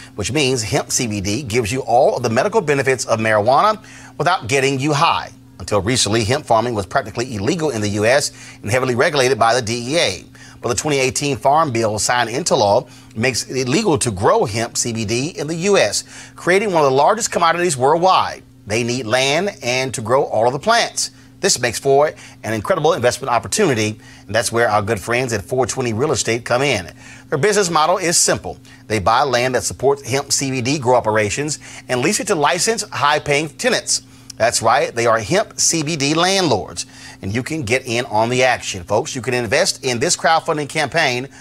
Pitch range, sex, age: 115-145 Hz, male, 30-49